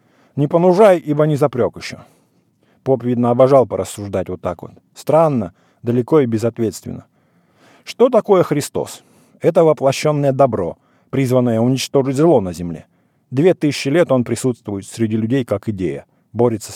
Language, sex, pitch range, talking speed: English, male, 105-150 Hz, 135 wpm